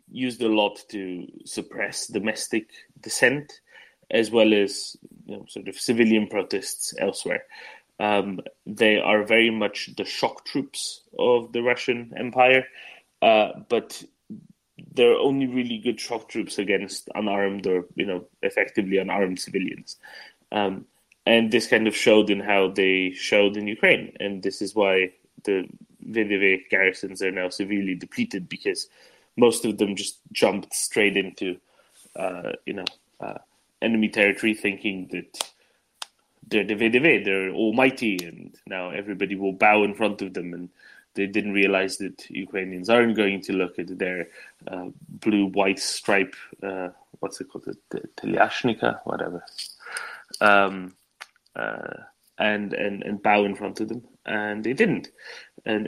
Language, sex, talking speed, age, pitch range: English, male, 140 wpm, 20-39, 95-110 Hz